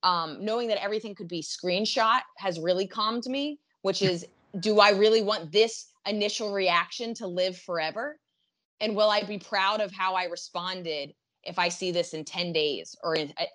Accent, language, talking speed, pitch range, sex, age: American, English, 185 wpm, 170-210 Hz, female, 20-39